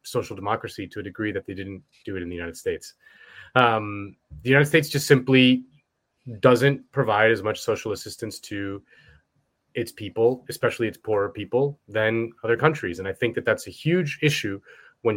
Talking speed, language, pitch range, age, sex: 180 wpm, English, 105-145 Hz, 30-49, male